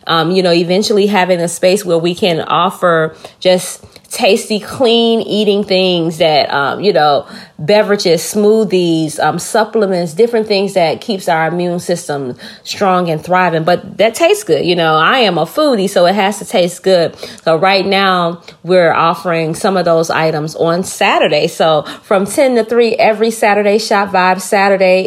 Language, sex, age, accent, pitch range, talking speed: English, female, 30-49, American, 170-220 Hz, 170 wpm